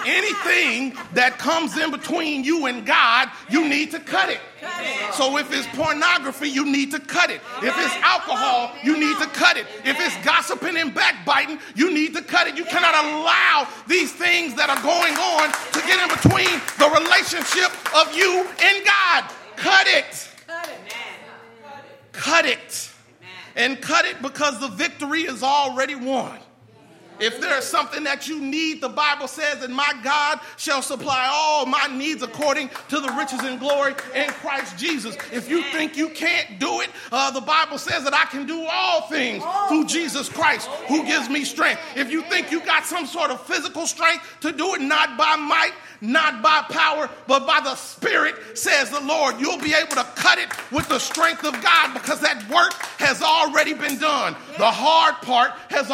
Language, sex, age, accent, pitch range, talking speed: English, male, 40-59, American, 275-325 Hz, 185 wpm